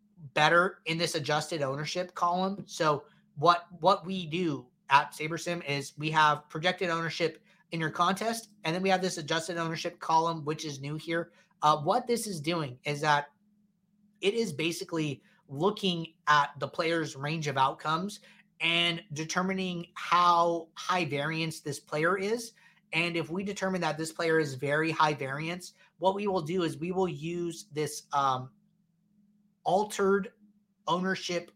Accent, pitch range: American, 155-185 Hz